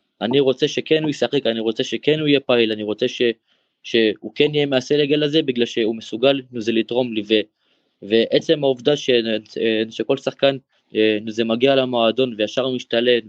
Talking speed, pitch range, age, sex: 170 wpm, 115-140 Hz, 20-39, male